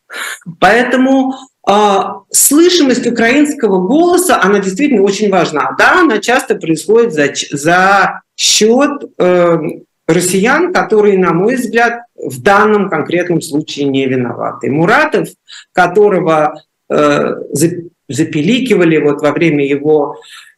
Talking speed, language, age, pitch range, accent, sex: 105 wpm, Russian, 50-69, 150-220 Hz, native, male